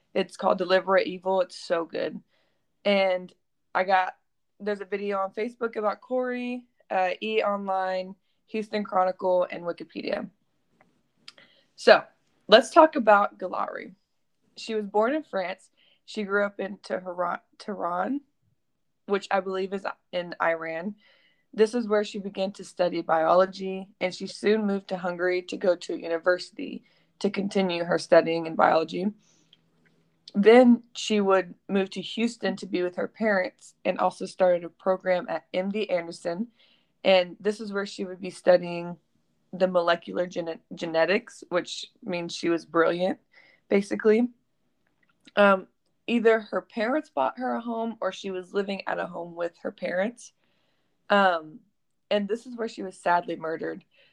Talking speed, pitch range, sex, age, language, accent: 145 wpm, 180-215 Hz, female, 20-39, English, American